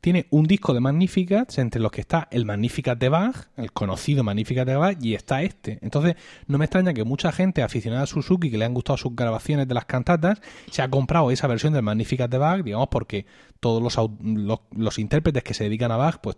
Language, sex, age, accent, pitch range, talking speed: Spanish, male, 30-49, Spanish, 110-145 Hz, 225 wpm